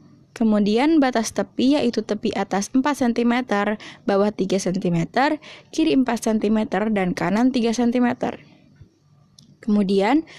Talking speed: 110 wpm